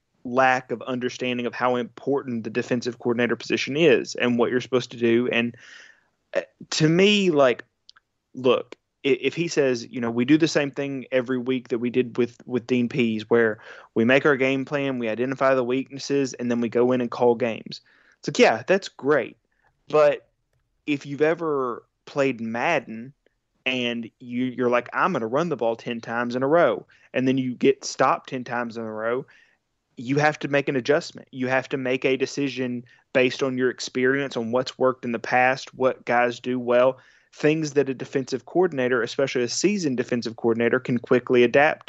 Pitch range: 120-135 Hz